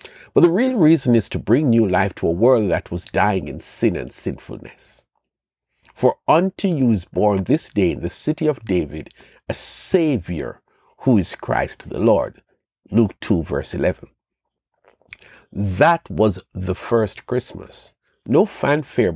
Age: 50-69